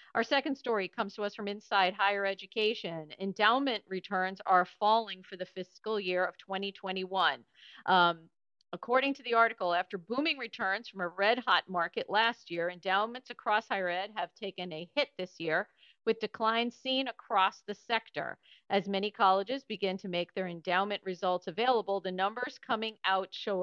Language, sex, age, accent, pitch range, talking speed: English, female, 50-69, American, 180-220 Hz, 165 wpm